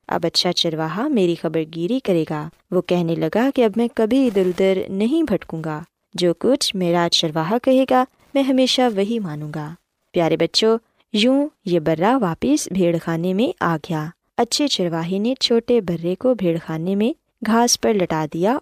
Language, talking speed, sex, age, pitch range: Urdu, 175 wpm, female, 20-39, 170-245 Hz